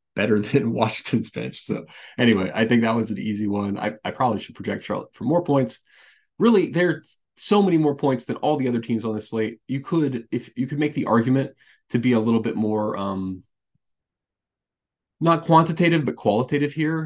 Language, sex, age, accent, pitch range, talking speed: English, male, 20-39, American, 110-140 Hz, 195 wpm